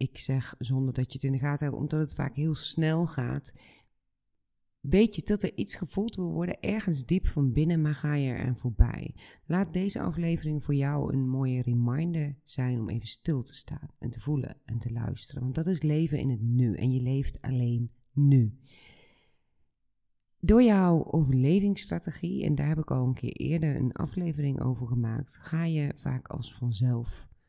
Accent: Dutch